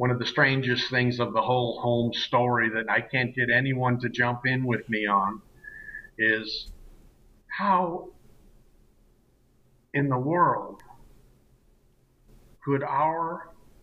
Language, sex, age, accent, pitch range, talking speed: English, male, 50-69, American, 120-160 Hz, 120 wpm